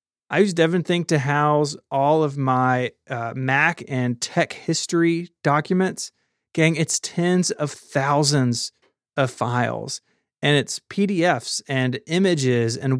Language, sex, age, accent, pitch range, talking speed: English, male, 30-49, American, 130-160 Hz, 125 wpm